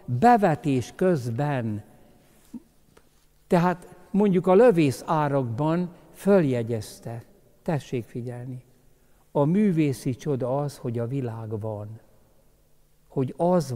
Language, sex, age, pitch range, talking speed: Hungarian, male, 60-79, 120-165 Hz, 85 wpm